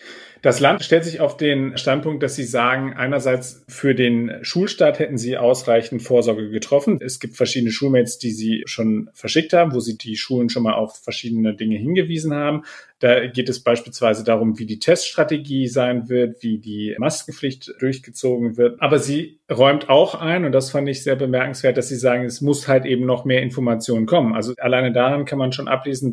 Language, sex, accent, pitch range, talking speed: German, male, German, 115-135 Hz, 190 wpm